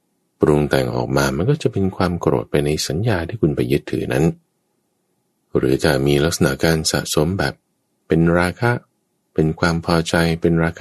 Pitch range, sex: 65-100 Hz, male